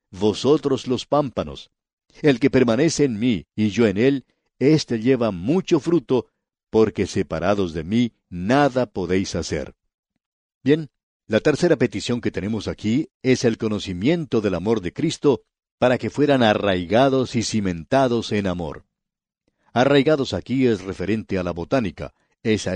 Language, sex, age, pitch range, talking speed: English, male, 50-69, 100-140 Hz, 140 wpm